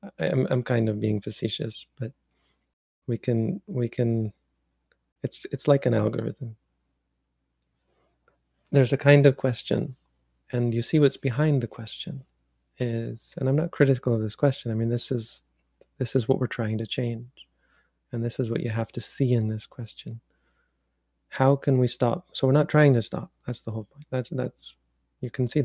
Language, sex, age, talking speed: English, male, 30-49, 180 wpm